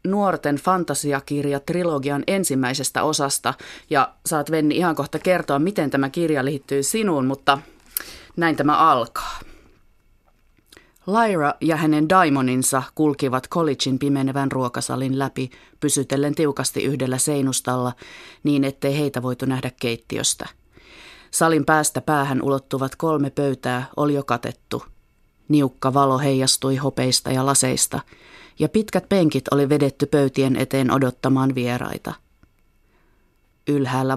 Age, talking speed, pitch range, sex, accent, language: 30-49, 110 wpm, 130-150 Hz, female, native, Finnish